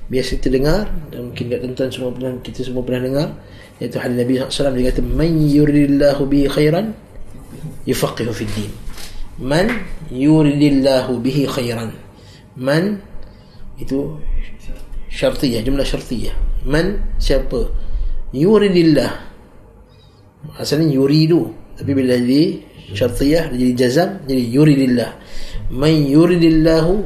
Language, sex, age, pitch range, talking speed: Malay, male, 20-39, 120-155 Hz, 115 wpm